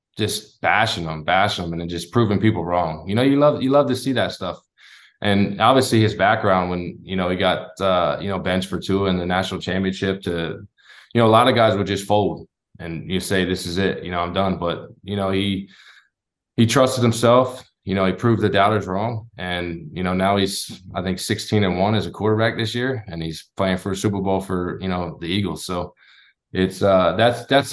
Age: 20-39